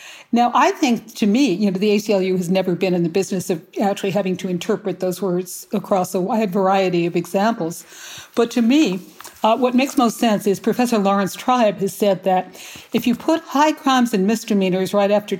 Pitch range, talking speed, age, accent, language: 190-235 Hz, 205 wpm, 60-79, American, English